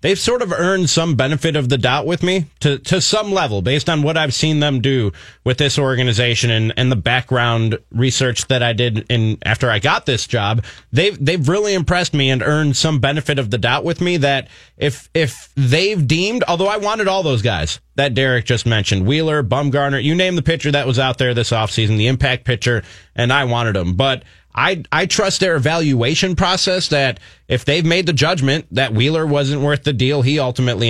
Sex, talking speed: male, 210 wpm